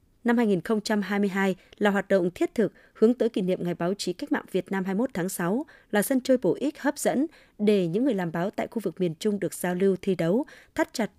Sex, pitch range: female, 180-240 Hz